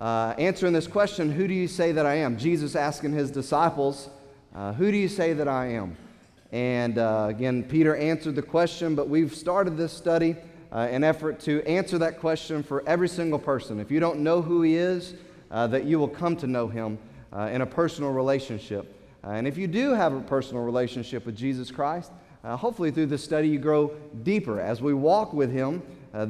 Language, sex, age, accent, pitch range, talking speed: English, male, 30-49, American, 130-170 Hz, 210 wpm